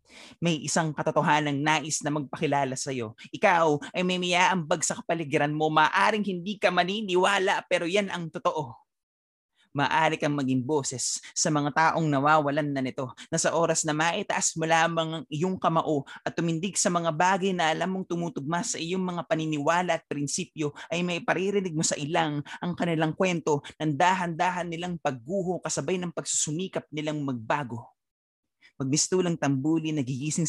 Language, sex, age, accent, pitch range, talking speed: Filipino, male, 20-39, native, 140-175 Hz, 150 wpm